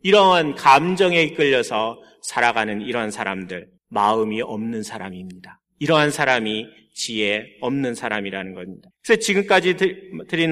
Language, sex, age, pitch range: Korean, male, 30-49, 115-170 Hz